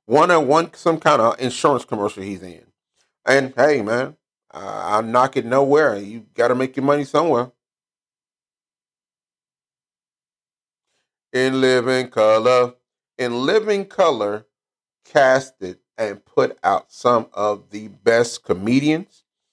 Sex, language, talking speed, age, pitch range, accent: male, English, 120 wpm, 30-49, 105-145 Hz, American